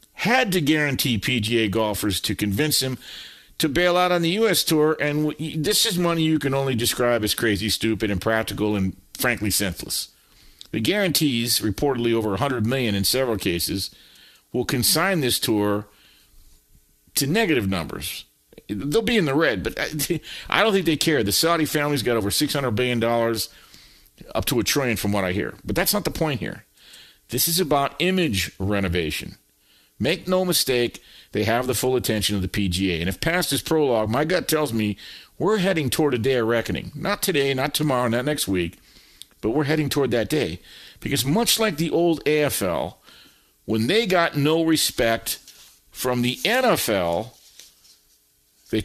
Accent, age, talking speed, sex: American, 50-69, 175 wpm, male